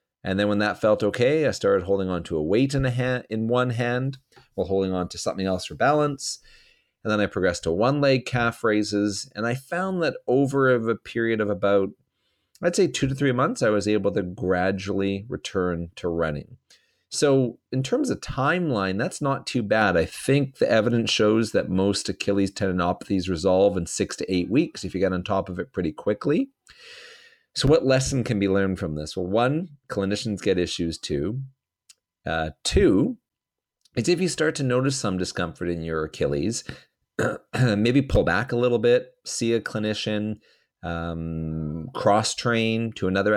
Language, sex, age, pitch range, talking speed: English, male, 40-59, 95-130 Hz, 185 wpm